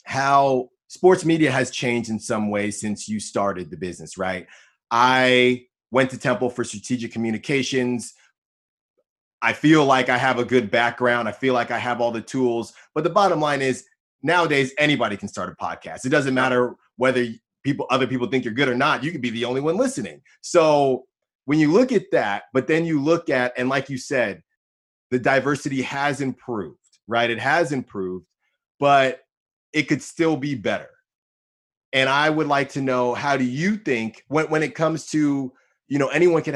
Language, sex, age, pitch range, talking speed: English, male, 30-49, 115-140 Hz, 190 wpm